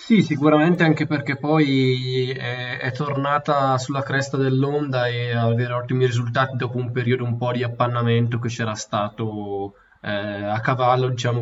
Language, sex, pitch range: Italian, male, 115-130 Hz